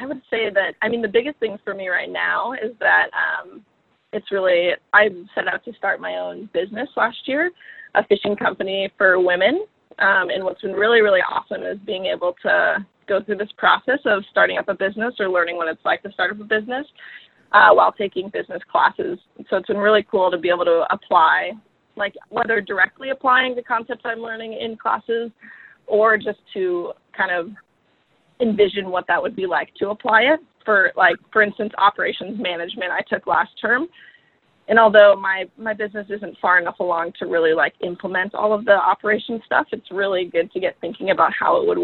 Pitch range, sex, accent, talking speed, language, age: 185-235 Hz, female, American, 200 wpm, English, 20-39